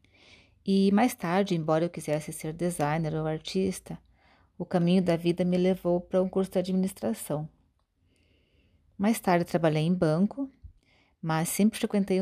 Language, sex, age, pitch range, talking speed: Portuguese, female, 30-49, 150-180 Hz, 140 wpm